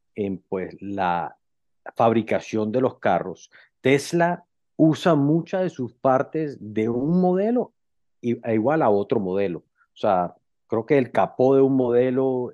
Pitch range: 115-155 Hz